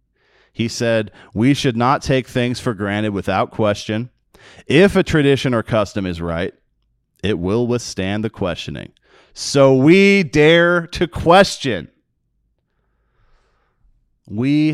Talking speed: 120 wpm